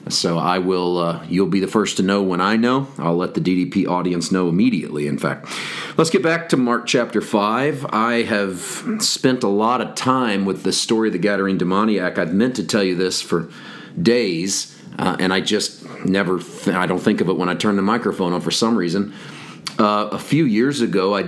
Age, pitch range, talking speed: 40-59, 95-115 Hz, 215 wpm